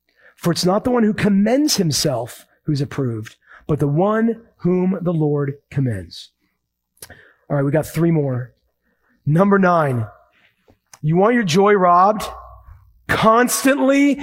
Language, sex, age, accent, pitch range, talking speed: English, male, 40-59, American, 140-215 Hz, 130 wpm